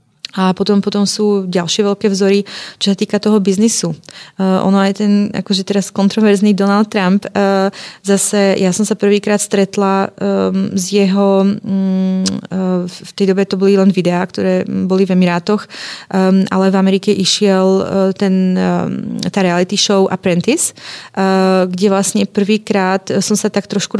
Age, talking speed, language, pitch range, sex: 30-49, 135 wpm, Czech, 190-205 Hz, female